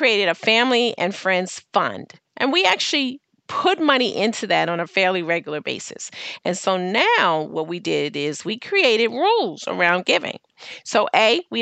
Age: 40-59